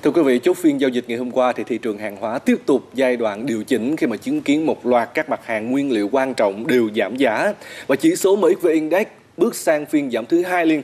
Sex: male